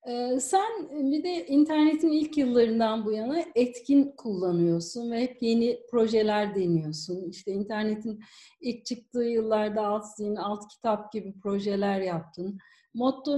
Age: 40-59